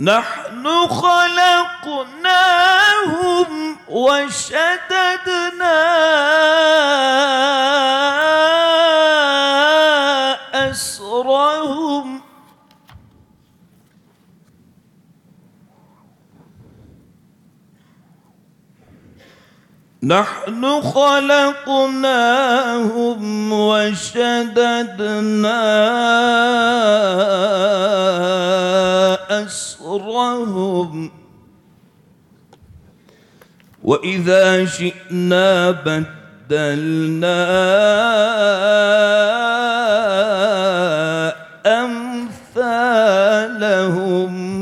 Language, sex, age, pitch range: Turkish, male, 40-59, 190-290 Hz